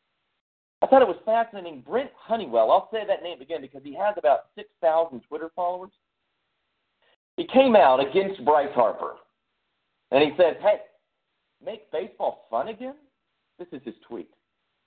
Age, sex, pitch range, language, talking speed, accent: 40-59, male, 130-195 Hz, English, 150 wpm, American